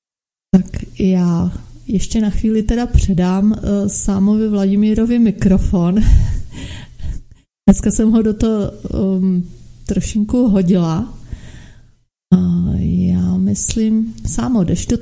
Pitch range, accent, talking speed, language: 185-230 Hz, native, 85 wpm, Czech